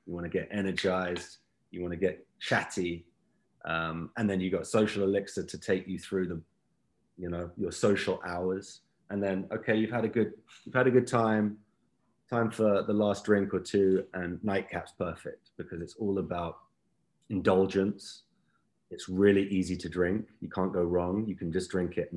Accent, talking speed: British, 185 wpm